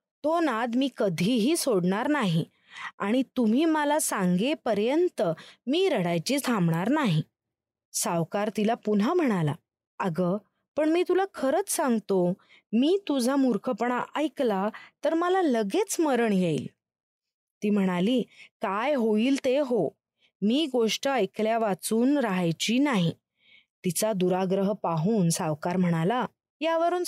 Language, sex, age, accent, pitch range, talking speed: Marathi, female, 20-39, native, 195-285 Hz, 115 wpm